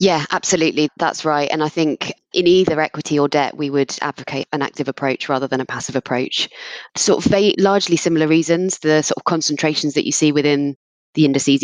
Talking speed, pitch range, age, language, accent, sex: 195 wpm, 135-155 Hz, 20-39, English, British, female